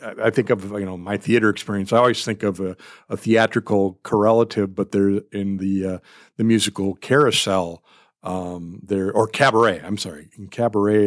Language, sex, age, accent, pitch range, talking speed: English, male, 50-69, American, 100-130 Hz, 175 wpm